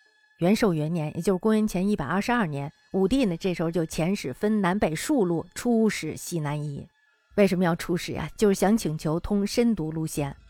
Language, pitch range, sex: Chinese, 165-230 Hz, female